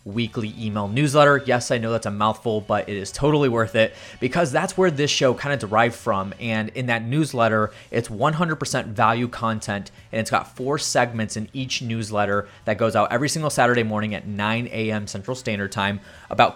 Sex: male